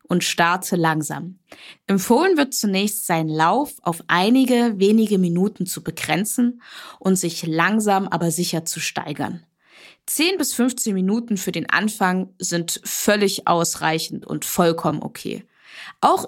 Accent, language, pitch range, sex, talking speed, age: German, German, 180-235 Hz, female, 130 wpm, 20-39